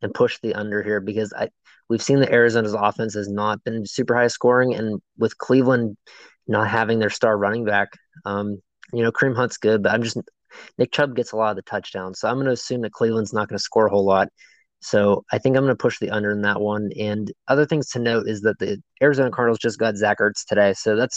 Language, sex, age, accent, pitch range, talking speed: English, male, 20-39, American, 105-120 Hz, 245 wpm